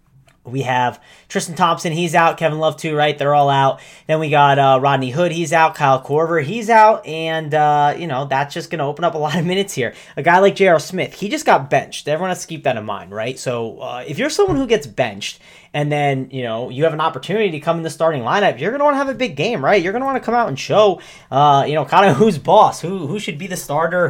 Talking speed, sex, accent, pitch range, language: 270 wpm, male, American, 135-190 Hz, English